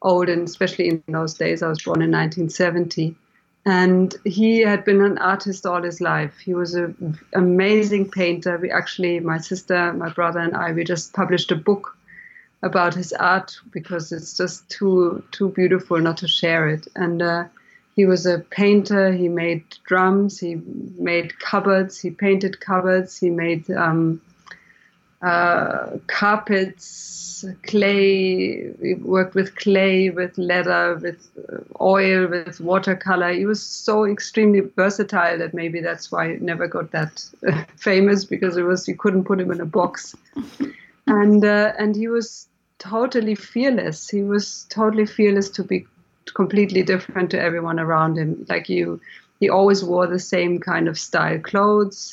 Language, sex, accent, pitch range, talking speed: English, female, German, 175-200 Hz, 160 wpm